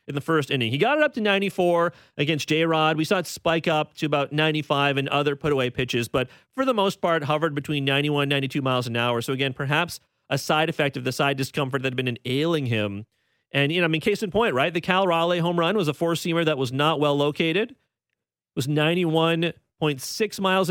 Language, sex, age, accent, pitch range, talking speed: English, male, 30-49, American, 140-180 Hz, 225 wpm